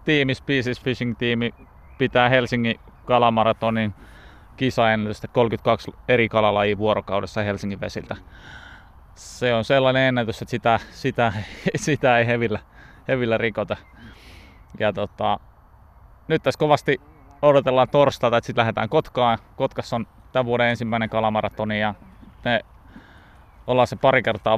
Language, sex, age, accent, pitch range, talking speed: Finnish, male, 20-39, native, 100-125 Hz, 115 wpm